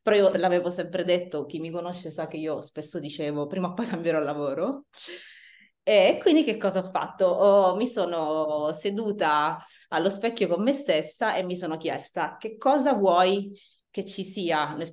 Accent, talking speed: native, 180 wpm